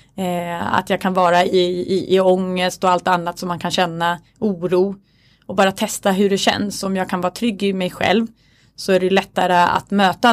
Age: 20-39